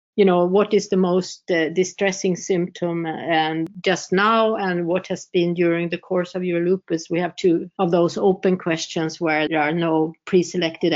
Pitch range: 175-200 Hz